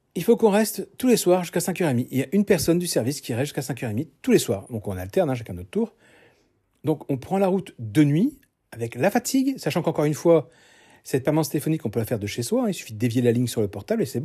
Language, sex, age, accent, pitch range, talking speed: French, male, 40-59, French, 120-185 Hz, 275 wpm